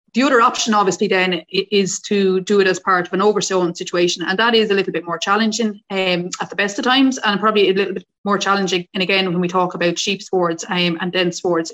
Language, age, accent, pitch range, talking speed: English, 30-49, Irish, 180-200 Hz, 245 wpm